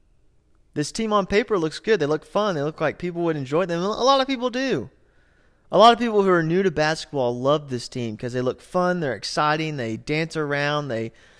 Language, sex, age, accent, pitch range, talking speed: English, male, 30-49, American, 120-180 Hz, 225 wpm